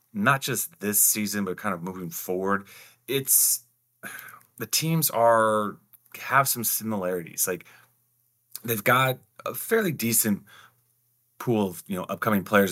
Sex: male